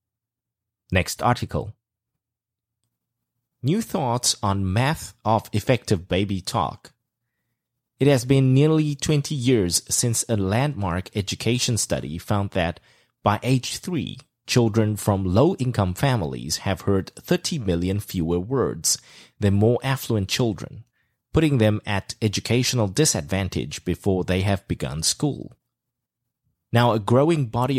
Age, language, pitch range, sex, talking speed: 30-49, English, 95-125 Hz, male, 115 wpm